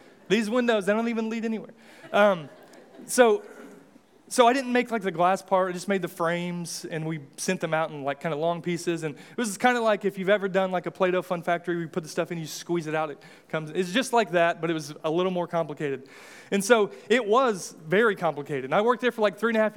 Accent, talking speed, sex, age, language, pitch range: American, 260 wpm, male, 30-49, English, 170-210 Hz